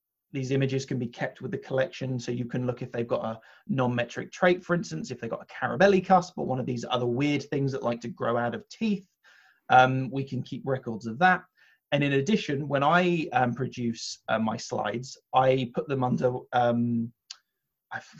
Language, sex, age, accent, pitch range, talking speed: English, male, 20-39, British, 125-155 Hz, 210 wpm